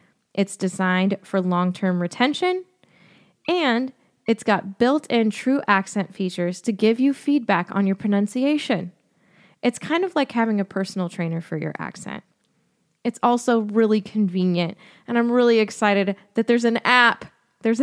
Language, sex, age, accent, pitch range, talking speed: English, female, 20-39, American, 185-240 Hz, 145 wpm